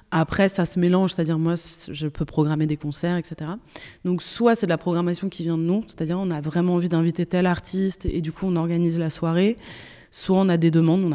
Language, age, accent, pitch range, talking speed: French, 20-39, French, 165-190 Hz, 230 wpm